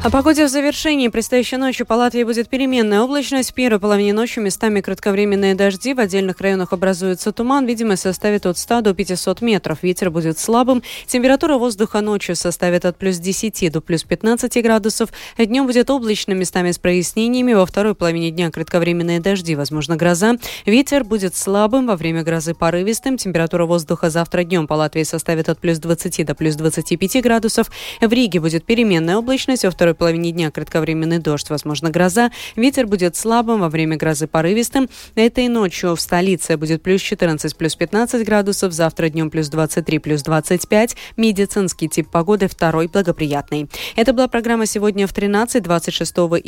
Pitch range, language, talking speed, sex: 170-230 Hz, Russian, 165 wpm, female